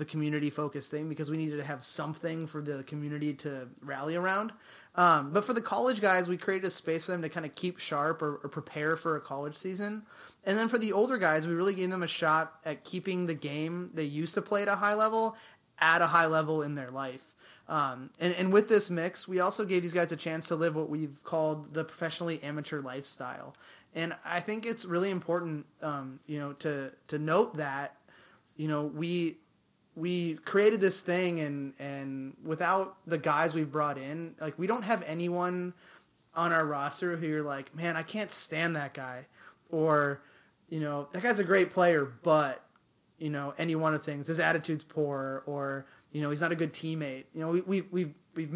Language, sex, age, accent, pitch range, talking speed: English, male, 20-39, American, 150-180 Hz, 210 wpm